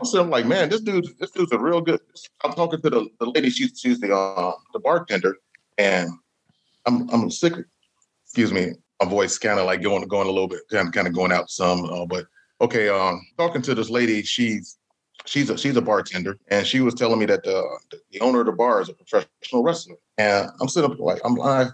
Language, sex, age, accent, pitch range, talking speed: English, male, 30-49, American, 110-170 Hz, 230 wpm